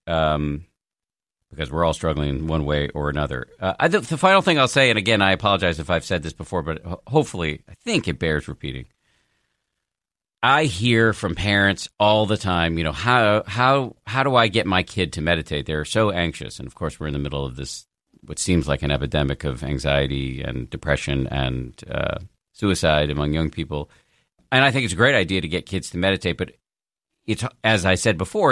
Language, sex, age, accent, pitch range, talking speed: English, male, 50-69, American, 75-105 Hz, 205 wpm